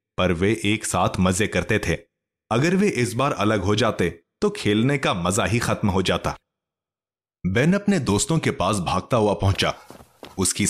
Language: Hindi